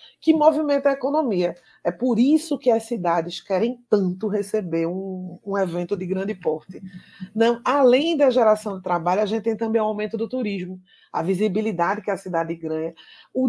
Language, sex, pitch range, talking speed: Portuguese, female, 185-255 Hz, 175 wpm